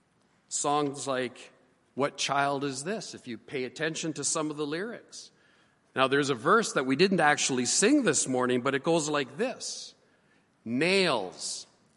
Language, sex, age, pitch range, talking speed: English, male, 40-59, 140-205 Hz, 160 wpm